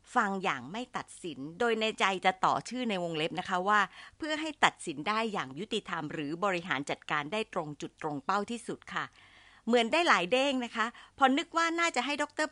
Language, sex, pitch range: Thai, female, 165-250 Hz